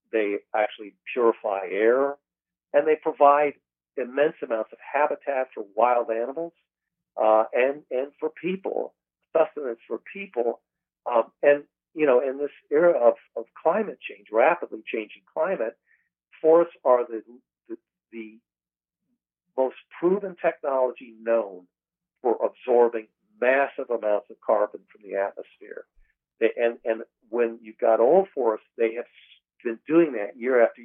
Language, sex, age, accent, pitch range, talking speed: English, male, 60-79, American, 115-190 Hz, 135 wpm